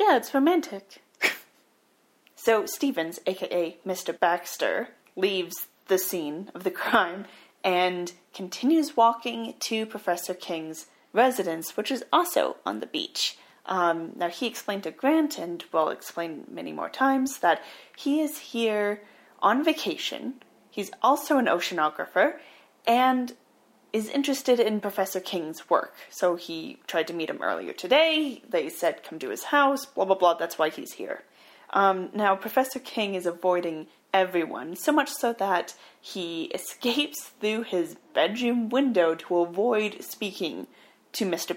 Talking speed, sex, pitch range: 145 wpm, female, 180-270 Hz